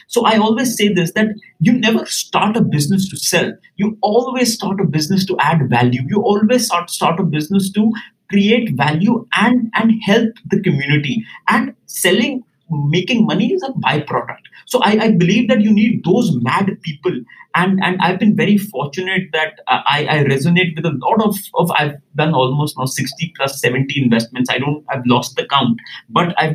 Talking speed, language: 190 wpm, English